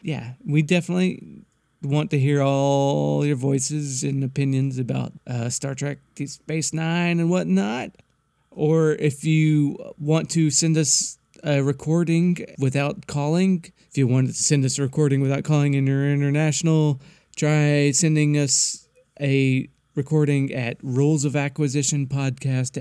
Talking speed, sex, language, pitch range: 140 wpm, male, English, 135-160 Hz